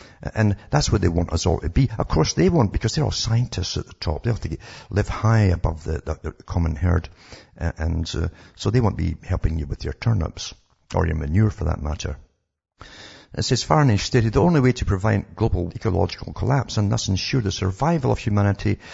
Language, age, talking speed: English, 60-79, 215 wpm